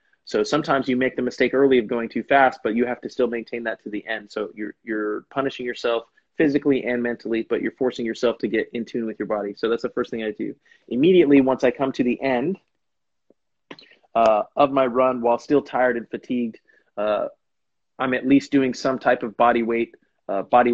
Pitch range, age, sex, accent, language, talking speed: 115-135 Hz, 20-39, male, American, English, 215 wpm